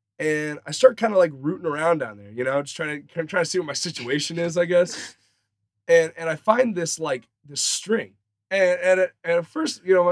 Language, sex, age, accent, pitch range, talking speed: English, male, 20-39, American, 120-195 Hz, 230 wpm